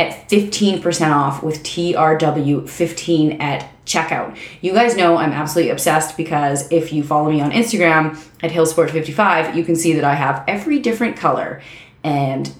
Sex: female